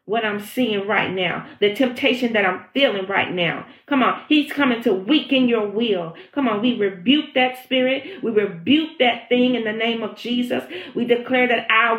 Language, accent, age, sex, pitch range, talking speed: English, American, 40-59, female, 190-260 Hz, 195 wpm